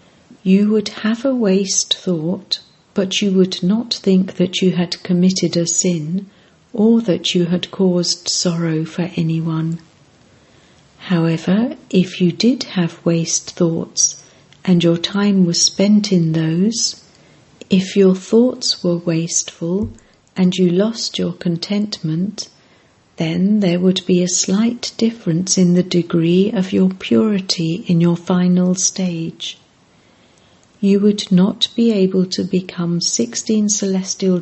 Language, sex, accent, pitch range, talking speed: English, female, British, 170-205 Hz, 130 wpm